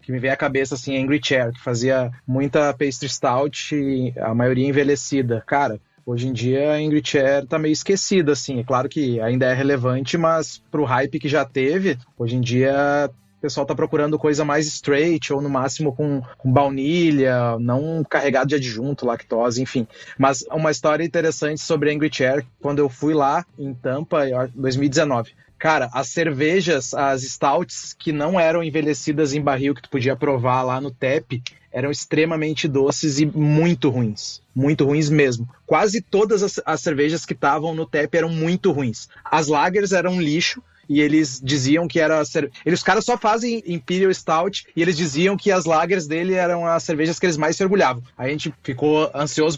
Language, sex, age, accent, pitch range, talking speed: Portuguese, male, 30-49, Brazilian, 135-160 Hz, 185 wpm